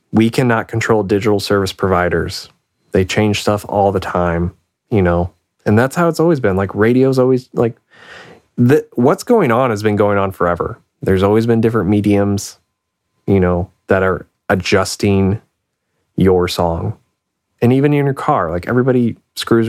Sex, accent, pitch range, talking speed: male, American, 90-105 Hz, 160 wpm